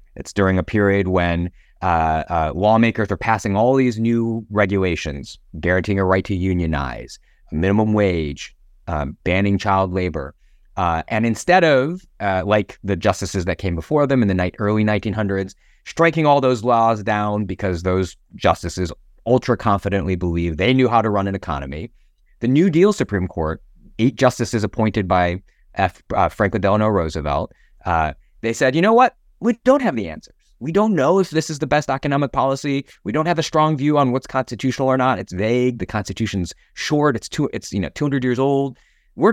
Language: English